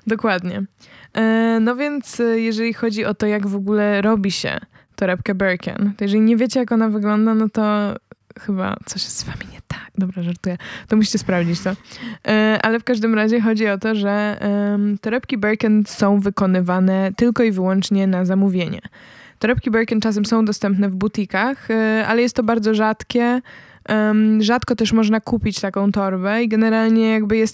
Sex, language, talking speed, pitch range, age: female, Polish, 170 wpm, 200-225 Hz, 20-39